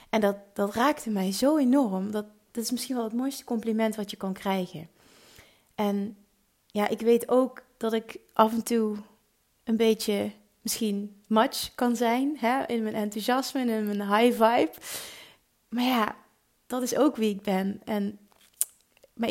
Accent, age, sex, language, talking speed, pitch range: Dutch, 30-49, female, Dutch, 160 wpm, 205-240 Hz